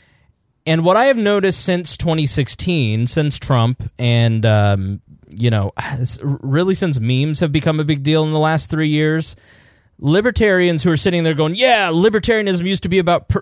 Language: English